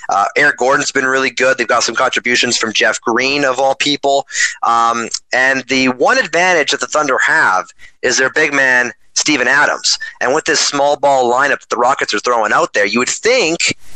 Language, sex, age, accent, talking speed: English, male, 30-49, American, 200 wpm